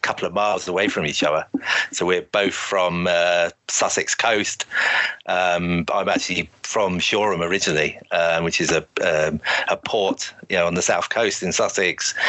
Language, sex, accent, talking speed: English, male, British, 170 wpm